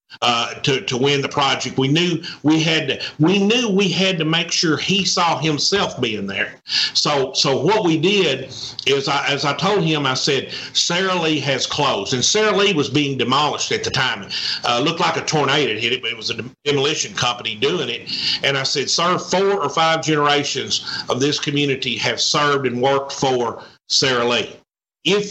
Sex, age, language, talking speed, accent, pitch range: male, 50-69, English, 195 wpm, American, 130-160 Hz